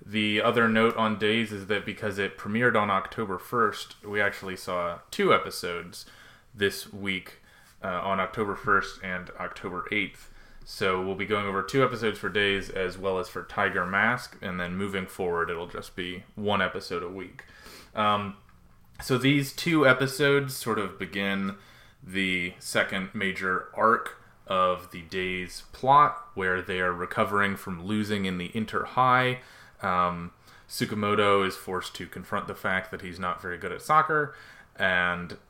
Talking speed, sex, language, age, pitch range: 160 wpm, male, English, 20-39, 90-105 Hz